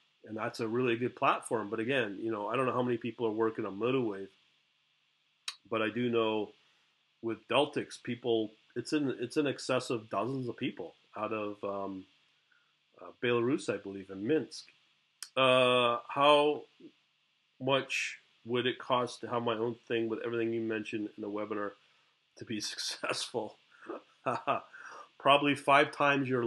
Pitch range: 110-130 Hz